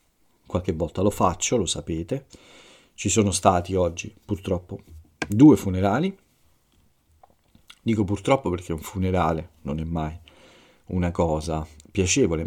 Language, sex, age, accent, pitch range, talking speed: Italian, male, 40-59, native, 85-100 Hz, 115 wpm